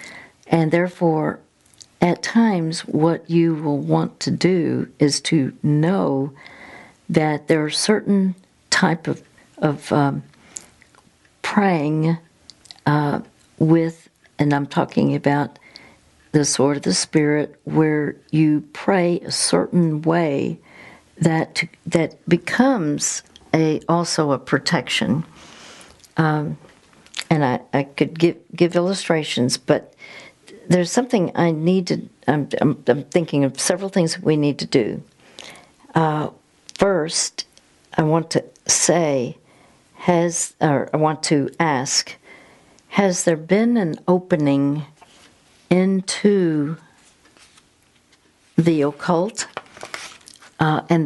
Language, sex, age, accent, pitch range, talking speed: English, female, 60-79, American, 150-175 Hz, 110 wpm